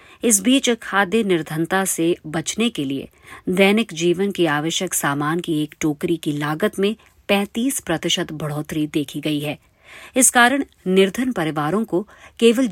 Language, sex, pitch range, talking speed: Hindi, female, 155-215 Hz, 145 wpm